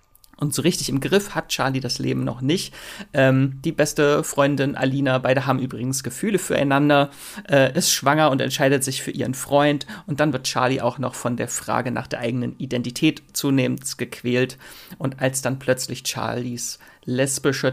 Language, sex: German, male